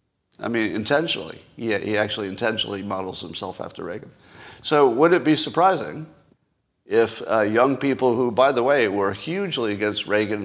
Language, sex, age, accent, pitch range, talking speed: English, male, 50-69, American, 100-130 Hz, 160 wpm